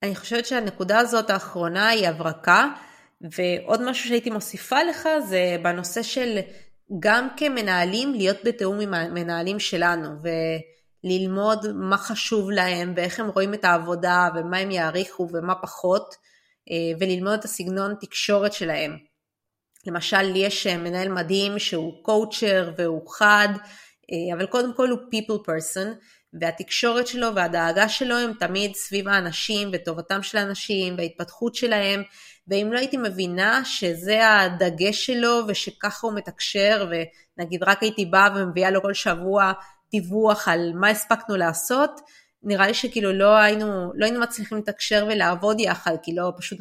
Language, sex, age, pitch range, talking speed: Hebrew, female, 20-39, 175-215 Hz, 135 wpm